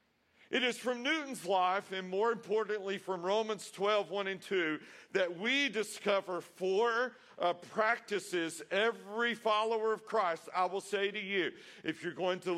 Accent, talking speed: American, 155 wpm